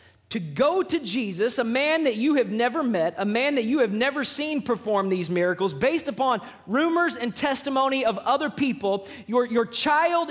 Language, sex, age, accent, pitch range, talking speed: English, male, 20-39, American, 225-320 Hz, 185 wpm